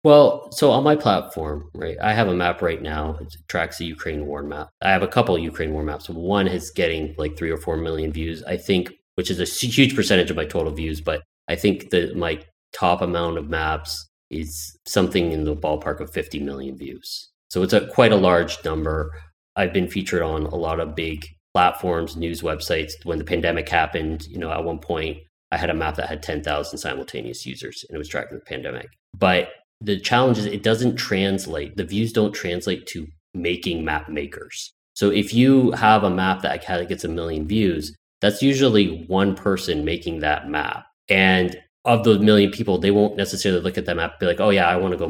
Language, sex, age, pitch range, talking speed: English, male, 30-49, 80-100 Hz, 215 wpm